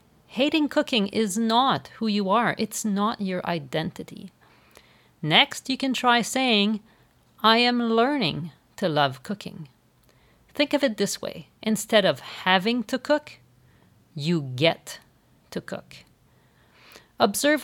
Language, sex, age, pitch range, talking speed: English, female, 40-59, 165-225 Hz, 125 wpm